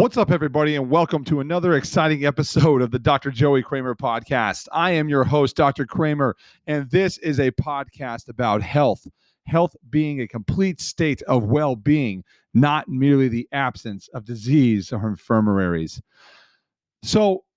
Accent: American